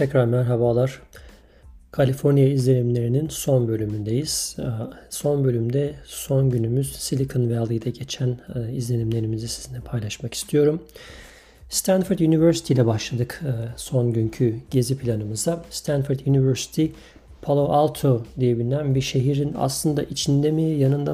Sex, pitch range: male, 120-145 Hz